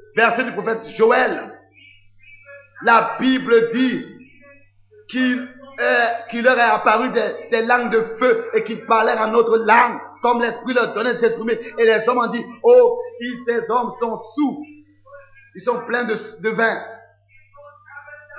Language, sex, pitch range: French, male, 230-275 Hz